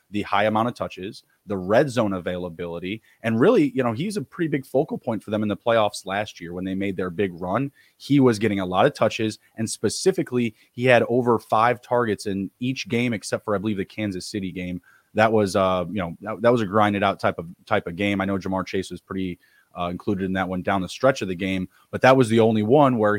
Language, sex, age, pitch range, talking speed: English, male, 20-39, 95-115 Hz, 250 wpm